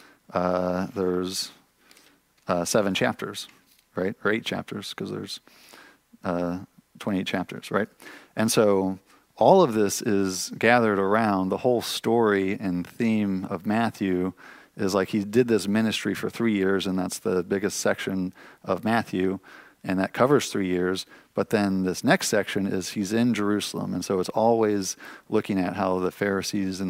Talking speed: 155 wpm